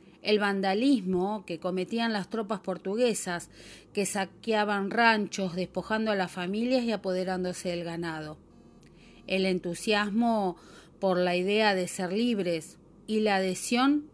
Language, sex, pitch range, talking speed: Spanish, female, 180-230 Hz, 125 wpm